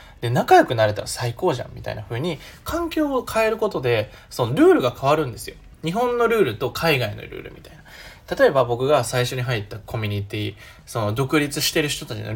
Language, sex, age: Japanese, male, 20-39